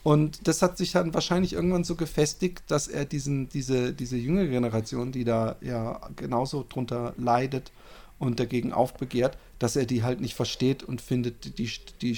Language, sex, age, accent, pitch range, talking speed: German, male, 40-59, German, 130-185 Hz, 175 wpm